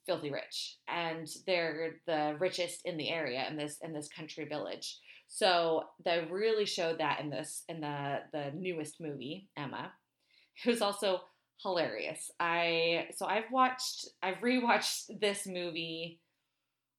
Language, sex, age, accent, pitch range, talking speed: English, female, 30-49, American, 155-205 Hz, 140 wpm